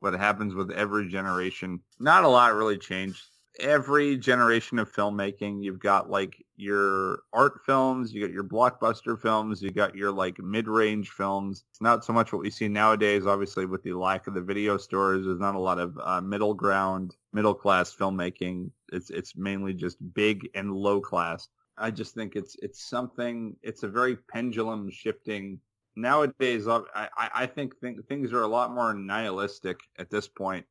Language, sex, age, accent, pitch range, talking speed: English, male, 30-49, American, 100-125 Hz, 175 wpm